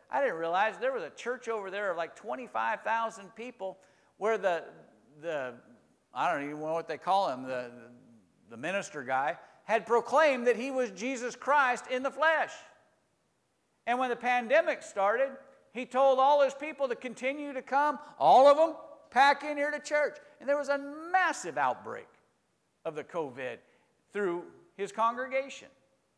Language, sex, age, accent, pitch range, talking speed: English, male, 50-69, American, 180-265 Hz, 165 wpm